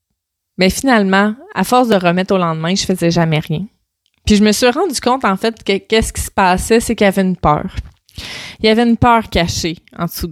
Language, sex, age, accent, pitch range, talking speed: French, female, 20-39, Canadian, 170-215 Hz, 235 wpm